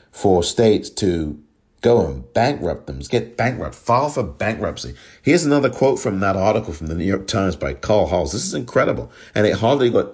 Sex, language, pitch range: male, English, 75-100 Hz